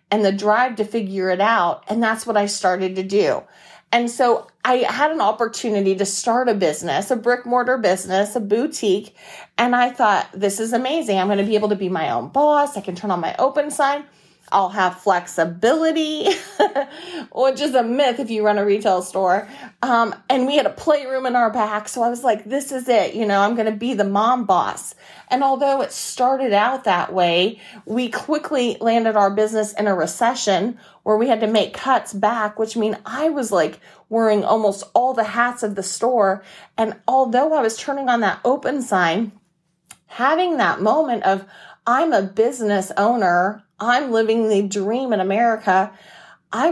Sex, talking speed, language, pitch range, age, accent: female, 195 wpm, English, 200-255 Hz, 30-49, American